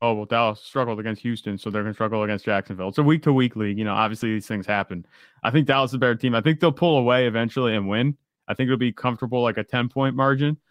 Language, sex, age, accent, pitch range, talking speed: English, male, 20-39, American, 115-140 Hz, 275 wpm